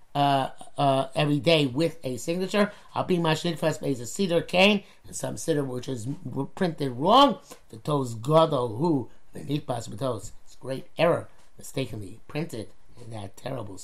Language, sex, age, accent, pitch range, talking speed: English, male, 50-69, American, 140-190 Hz, 150 wpm